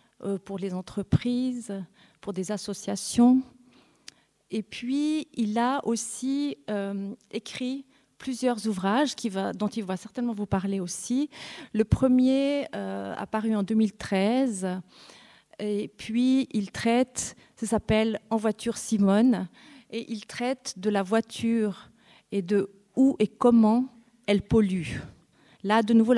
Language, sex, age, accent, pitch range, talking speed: French, female, 40-59, French, 200-240 Hz, 130 wpm